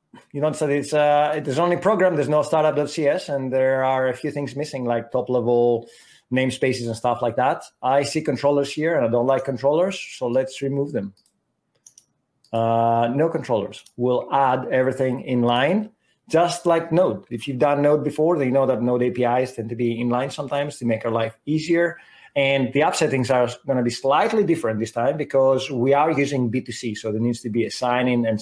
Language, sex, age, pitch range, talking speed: English, male, 30-49, 120-145 Hz, 205 wpm